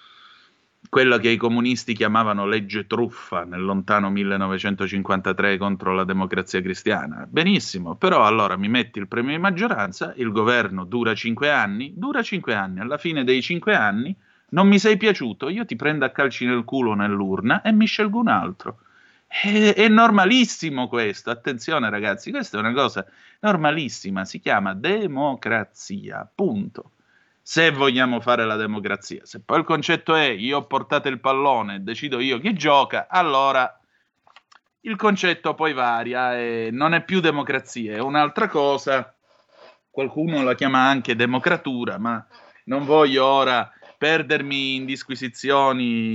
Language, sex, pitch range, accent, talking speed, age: Italian, male, 115-155 Hz, native, 145 wpm, 30-49